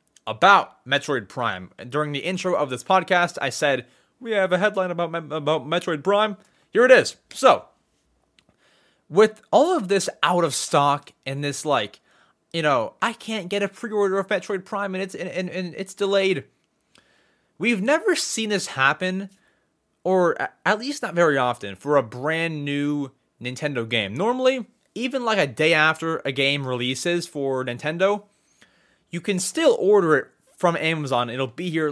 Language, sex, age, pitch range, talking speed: English, male, 20-39, 140-200 Hz, 165 wpm